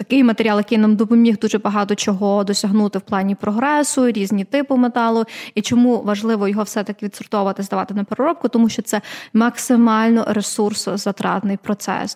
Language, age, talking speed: Ukrainian, 20-39, 150 wpm